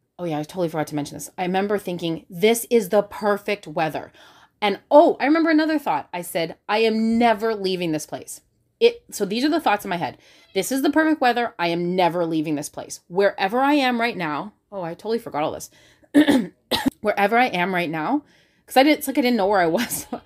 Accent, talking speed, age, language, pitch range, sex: American, 230 wpm, 30-49, English, 165-230 Hz, female